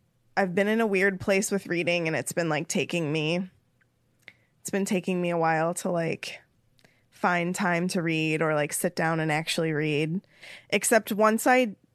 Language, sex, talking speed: English, female, 180 wpm